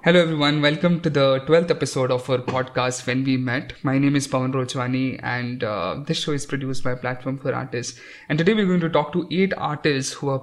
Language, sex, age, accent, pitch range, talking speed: English, male, 20-39, Indian, 130-150 Hz, 225 wpm